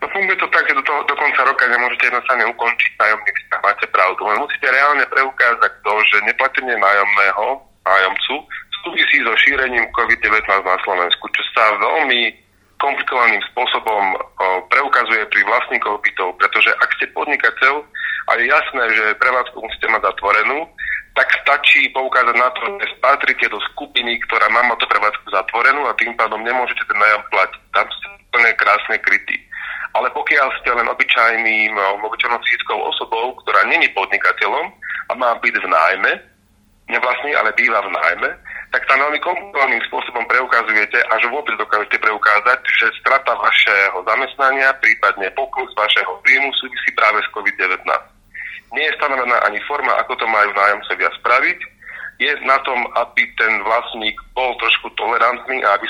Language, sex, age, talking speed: Slovak, male, 40-59, 150 wpm